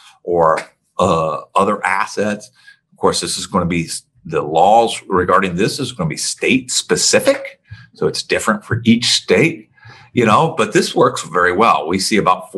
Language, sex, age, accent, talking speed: English, male, 50-69, American, 165 wpm